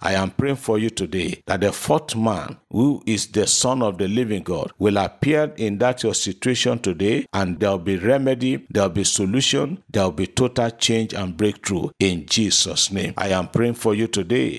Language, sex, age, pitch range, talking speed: English, male, 50-69, 100-125 Hz, 205 wpm